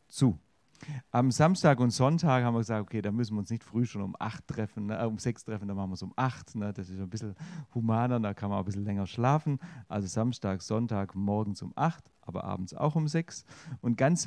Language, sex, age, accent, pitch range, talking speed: German, male, 40-59, German, 105-140 Hz, 235 wpm